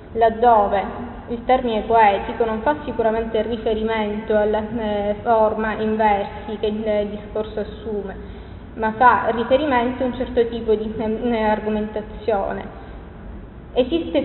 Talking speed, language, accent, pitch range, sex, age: 120 wpm, Italian, native, 215-245 Hz, female, 20-39